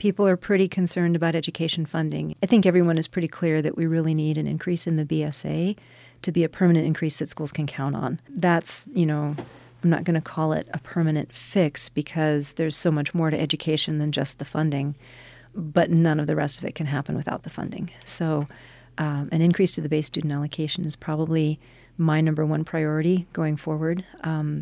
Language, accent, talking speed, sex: English, American, 205 wpm, female